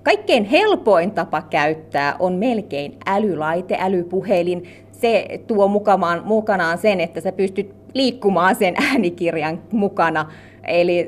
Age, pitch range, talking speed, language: 30-49, 165-245 Hz, 110 wpm, Finnish